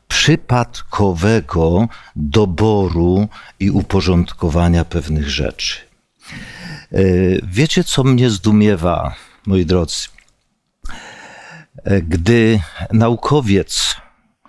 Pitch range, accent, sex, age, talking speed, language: 95-120 Hz, native, male, 50-69, 60 wpm, Polish